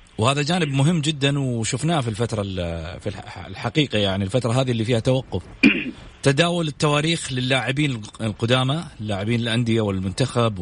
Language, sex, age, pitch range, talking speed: English, male, 40-59, 105-145 Hz, 125 wpm